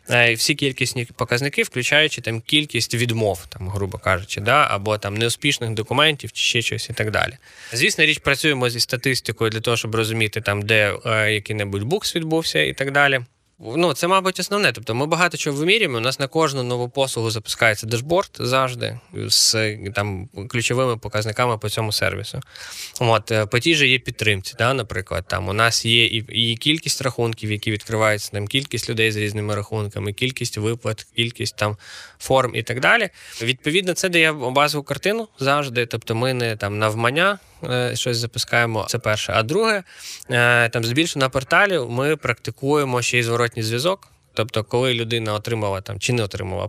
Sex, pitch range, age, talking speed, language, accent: male, 110-135 Hz, 20-39, 165 wpm, Ukrainian, native